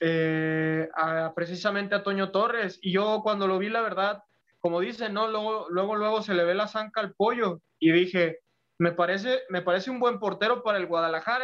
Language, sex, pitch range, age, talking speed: Spanish, male, 175-220 Hz, 20-39, 205 wpm